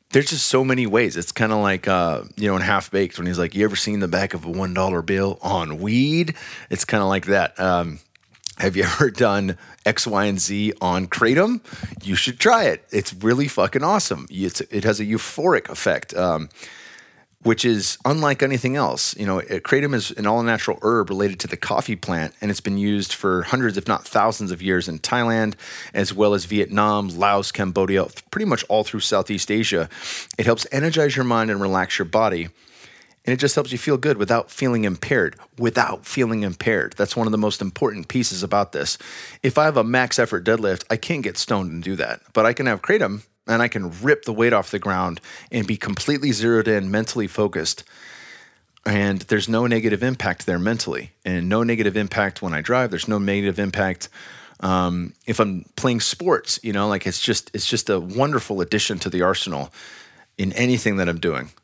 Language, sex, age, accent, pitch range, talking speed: English, male, 30-49, American, 95-115 Hz, 200 wpm